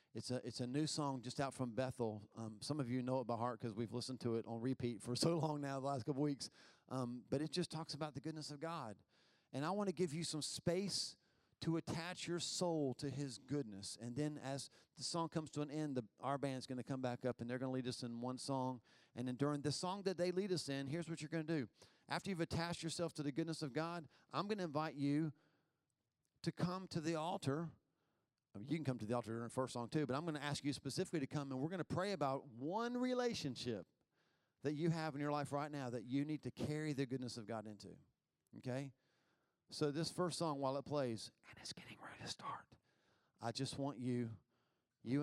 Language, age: English, 40-59